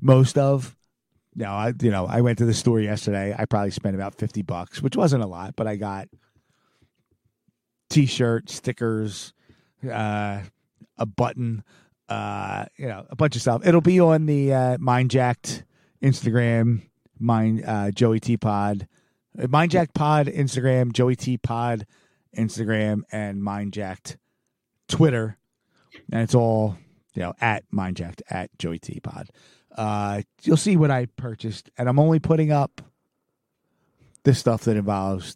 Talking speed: 150 wpm